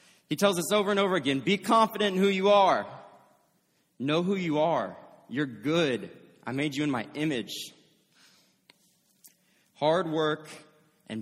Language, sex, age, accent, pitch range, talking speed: English, male, 20-39, American, 120-165 Hz, 150 wpm